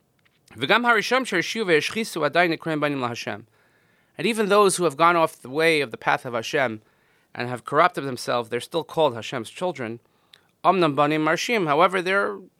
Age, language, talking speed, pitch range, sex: 30-49, English, 120 wpm, 120-160 Hz, male